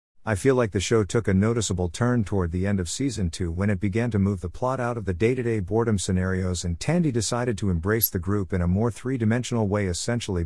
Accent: American